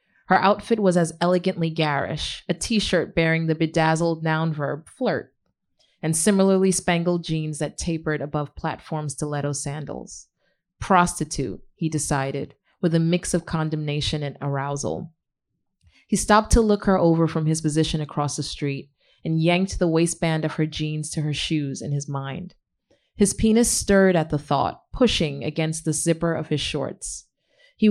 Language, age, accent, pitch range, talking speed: English, 30-49, American, 150-180 Hz, 155 wpm